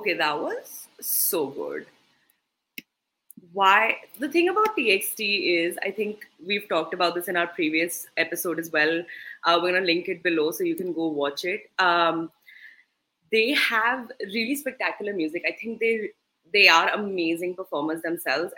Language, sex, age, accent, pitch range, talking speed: English, female, 20-39, Indian, 165-250 Hz, 160 wpm